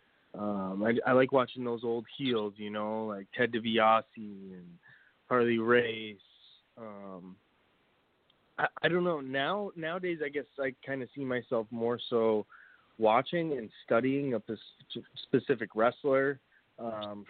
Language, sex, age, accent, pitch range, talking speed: English, male, 20-39, American, 100-125 Hz, 140 wpm